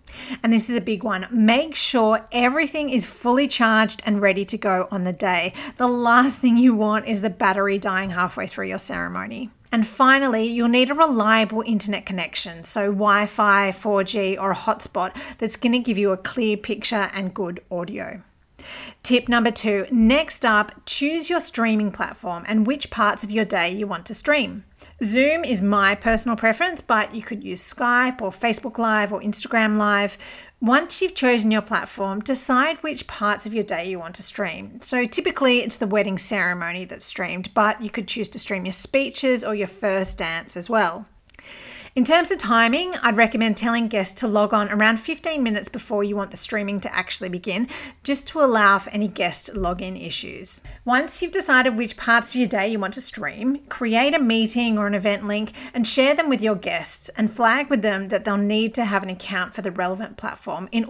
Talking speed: 195 wpm